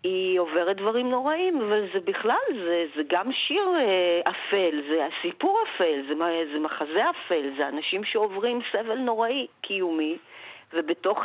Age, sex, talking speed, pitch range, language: 40-59, female, 130 wpm, 170-230 Hz, Hebrew